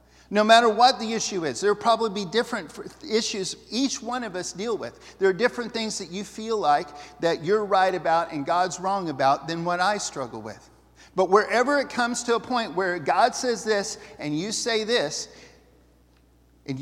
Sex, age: male, 50-69